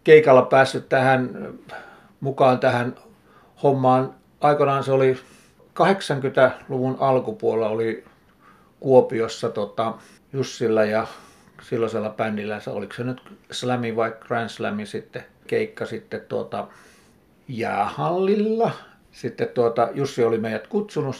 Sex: male